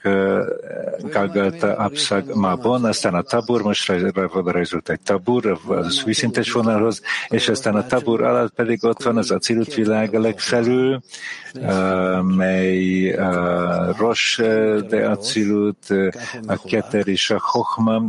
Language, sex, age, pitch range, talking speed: English, male, 50-69, 95-110 Hz, 120 wpm